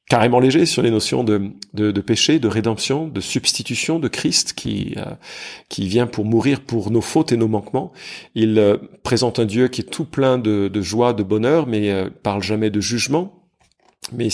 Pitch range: 105-130 Hz